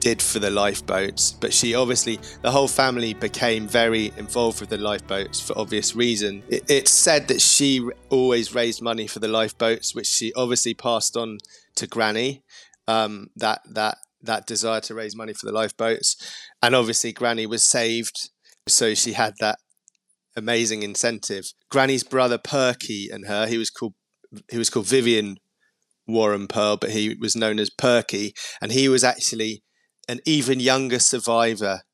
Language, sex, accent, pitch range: English, male, British, 105-120 Hz